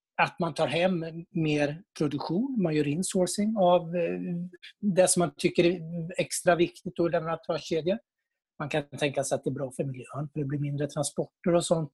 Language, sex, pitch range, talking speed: Swedish, male, 155-185 Hz, 195 wpm